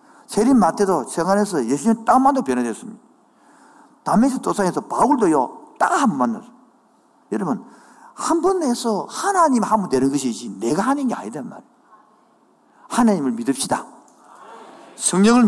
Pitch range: 185-260 Hz